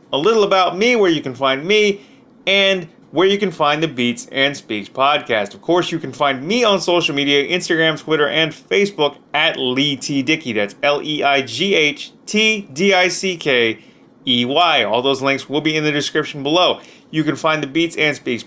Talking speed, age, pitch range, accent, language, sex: 170 wpm, 30-49, 135-180 Hz, American, English, male